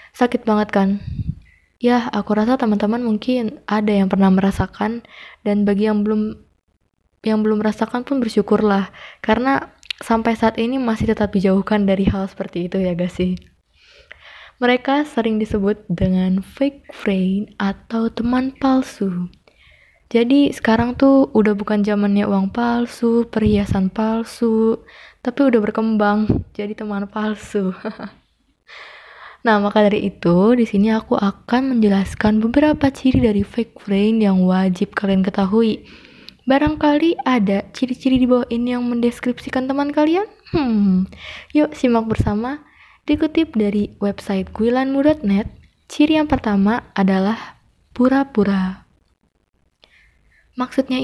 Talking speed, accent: 120 wpm, native